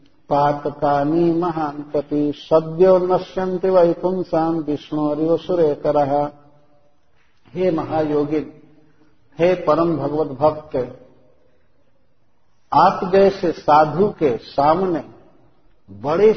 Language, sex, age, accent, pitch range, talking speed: Hindi, male, 50-69, native, 145-170 Hz, 80 wpm